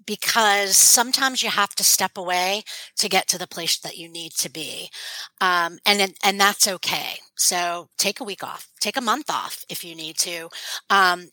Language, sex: English, female